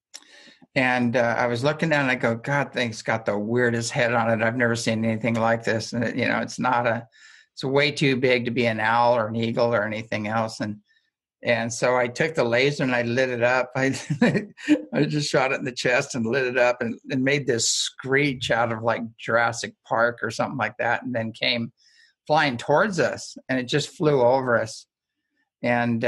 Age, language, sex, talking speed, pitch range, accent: 50-69, English, male, 215 wpm, 115-140 Hz, American